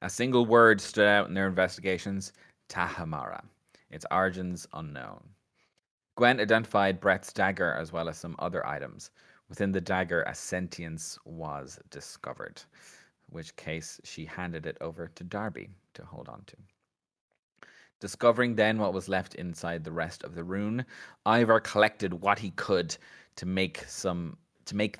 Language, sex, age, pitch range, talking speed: English, male, 30-49, 85-105 Hz, 150 wpm